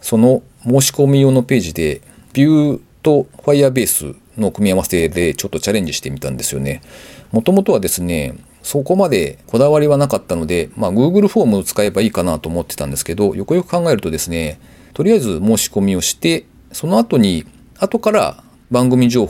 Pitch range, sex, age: 85-140 Hz, male, 40-59